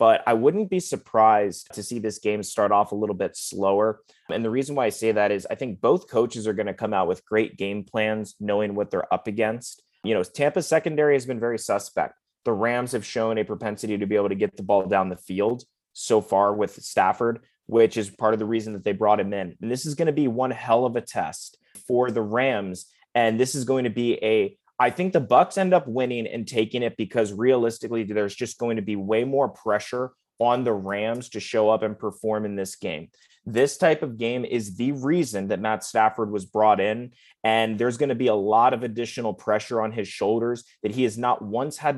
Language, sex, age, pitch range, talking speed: English, male, 20-39, 105-125 Hz, 235 wpm